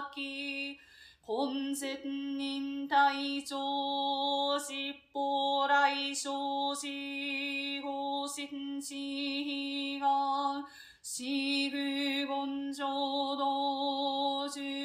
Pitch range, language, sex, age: 275-280 Hz, Japanese, female, 30-49